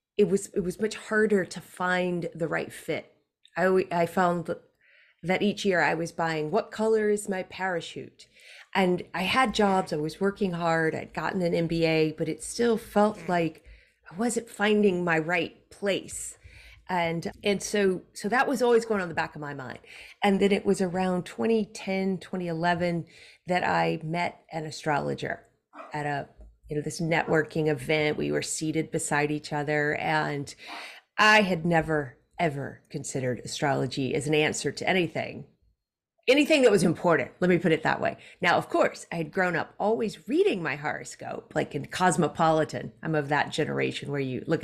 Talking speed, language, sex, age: 175 wpm, English, female, 30-49